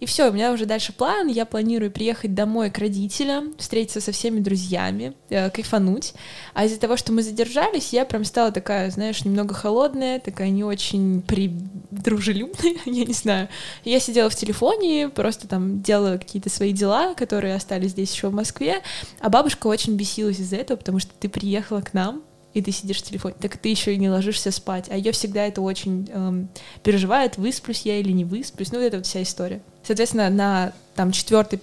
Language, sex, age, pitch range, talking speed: Russian, female, 20-39, 195-240 Hz, 190 wpm